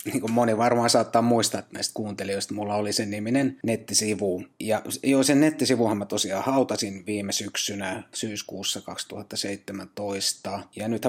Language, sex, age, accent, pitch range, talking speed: Finnish, male, 30-49, native, 95-110 Hz, 140 wpm